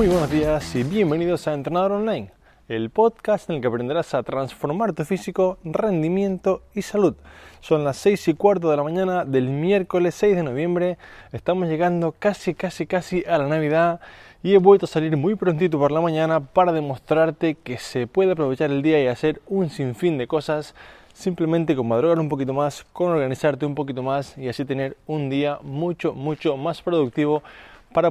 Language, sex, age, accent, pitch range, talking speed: Spanish, male, 20-39, Argentinian, 140-170 Hz, 185 wpm